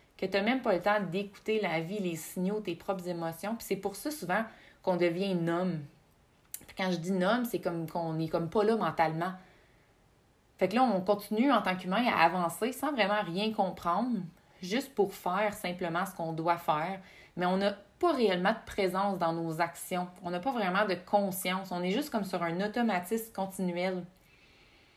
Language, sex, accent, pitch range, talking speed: French, female, Canadian, 165-200 Hz, 195 wpm